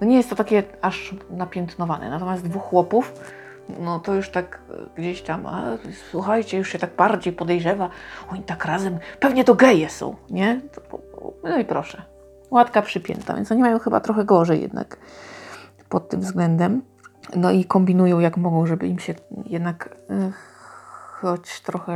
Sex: female